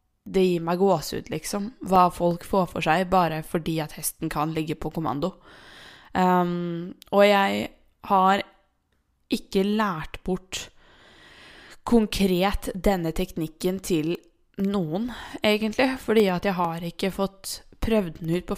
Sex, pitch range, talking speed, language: female, 175-215 Hz, 125 wpm, English